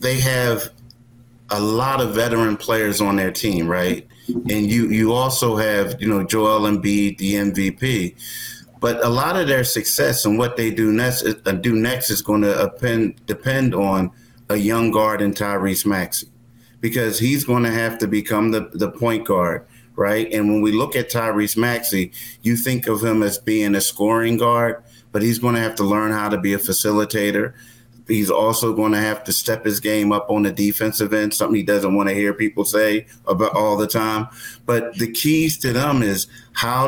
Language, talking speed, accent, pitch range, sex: English, 185 wpm, American, 105-120 Hz, male